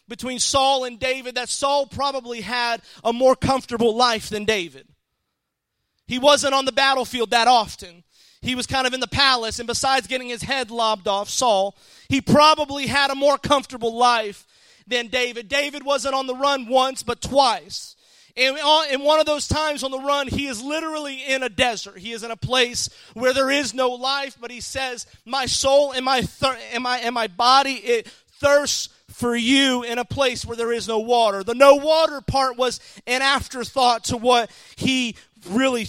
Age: 30-49